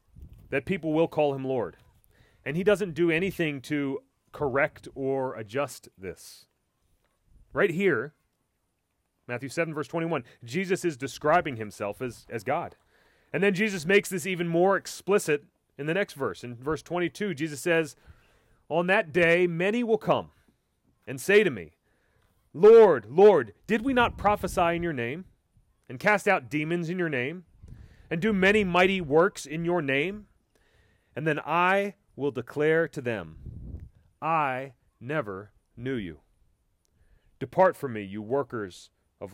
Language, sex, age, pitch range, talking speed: English, male, 30-49, 110-180 Hz, 150 wpm